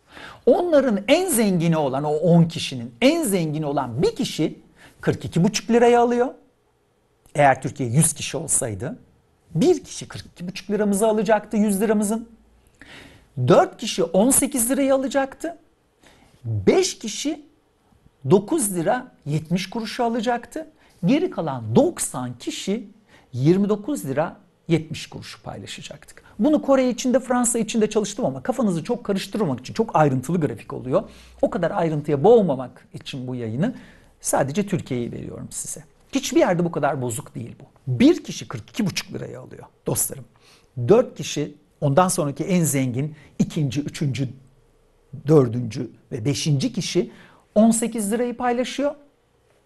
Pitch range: 145-240 Hz